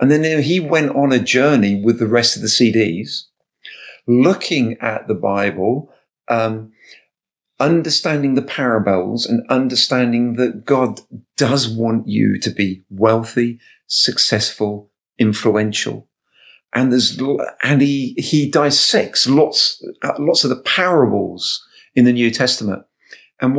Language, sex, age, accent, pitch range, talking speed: English, male, 50-69, British, 105-125 Hz, 130 wpm